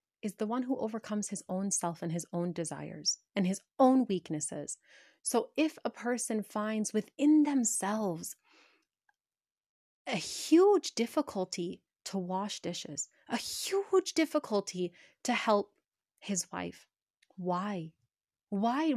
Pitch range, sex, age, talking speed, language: 190-245 Hz, female, 30-49, 120 wpm, English